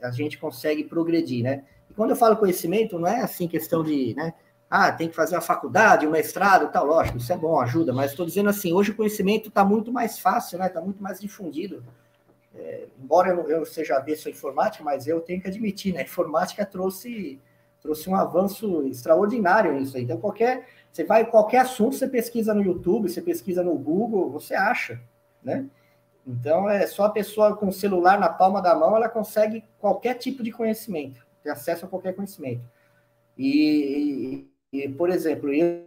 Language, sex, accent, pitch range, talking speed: Portuguese, male, Brazilian, 145-210 Hz, 185 wpm